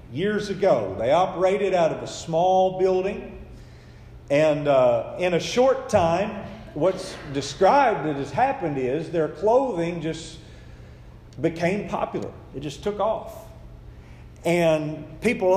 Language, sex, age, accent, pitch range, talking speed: English, male, 40-59, American, 170-245 Hz, 125 wpm